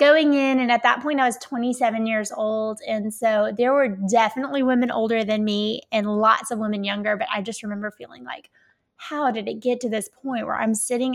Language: English